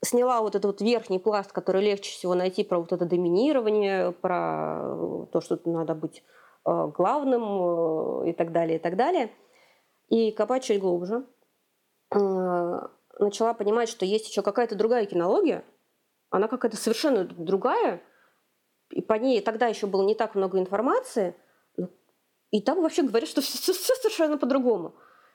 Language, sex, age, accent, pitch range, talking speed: Russian, female, 30-49, native, 175-220 Hz, 145 wpm